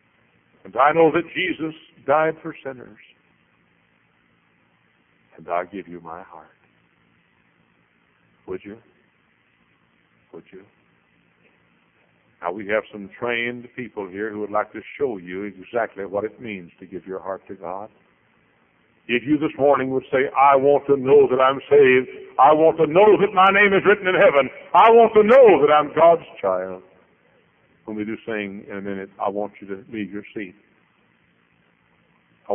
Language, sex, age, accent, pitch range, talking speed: English, male, 60-79, American, 100-145 Hz, 160 wpm